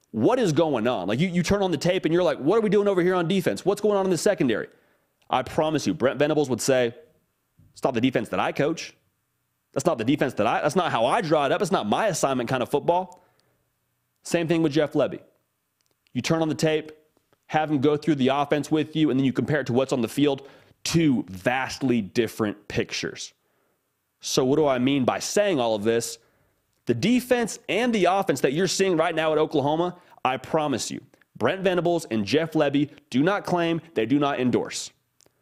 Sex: male